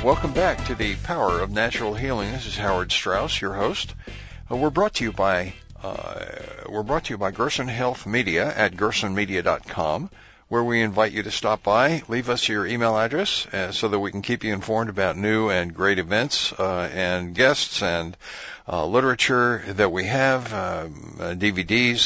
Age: 60-79